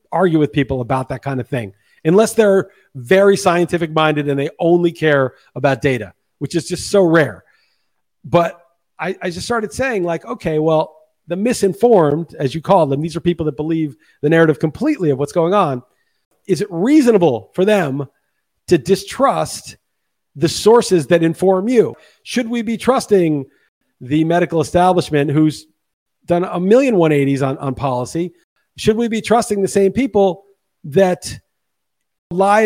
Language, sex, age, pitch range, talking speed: English, male, 40-59, 160-205 Hz, 160 wpm